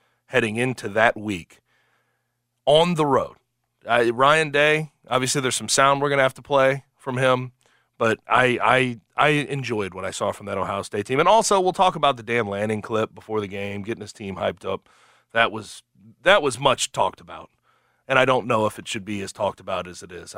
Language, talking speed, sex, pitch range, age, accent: English, 210 wpm, male, 110-145 Hz, 30-49, American